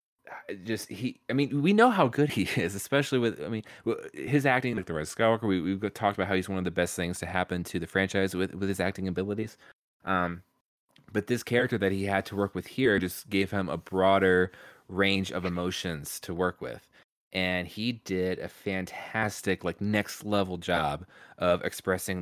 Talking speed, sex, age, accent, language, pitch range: 200 wpm, male, 20-39, American, English, 90-110 Hz